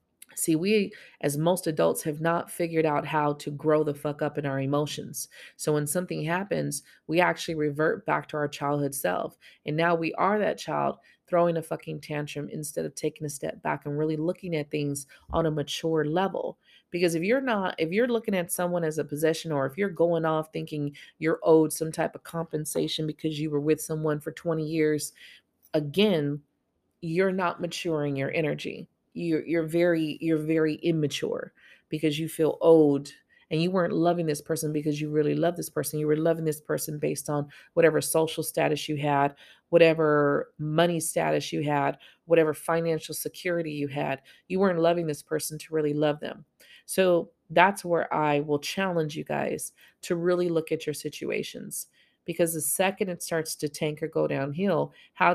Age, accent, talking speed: 30-49, American, 185 wpm